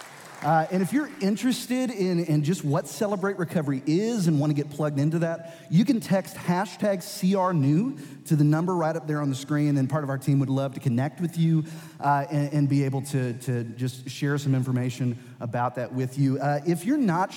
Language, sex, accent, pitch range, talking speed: English, male, American, 130-170 Hz, 220 wpm